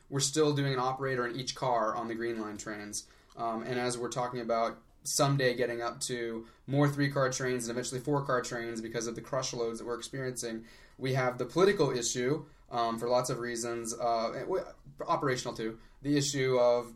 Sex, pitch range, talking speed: male, 120-145 Hz, 190 wpm